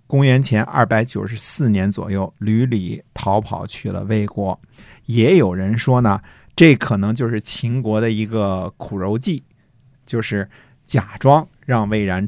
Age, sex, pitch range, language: 50-69, male, 105-135 Hz, Chinese